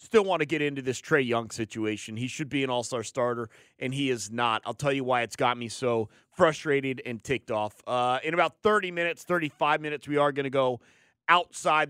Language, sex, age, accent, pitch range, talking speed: English, male, 30-49, American, 125-195 Hz, 220 wpm